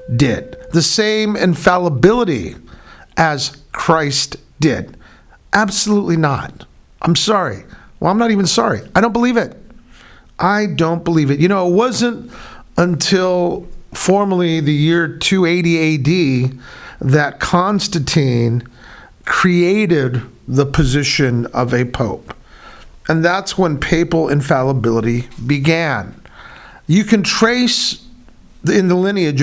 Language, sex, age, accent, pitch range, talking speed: English, male, 50-69, American, 135-185 Hz, 110 wpm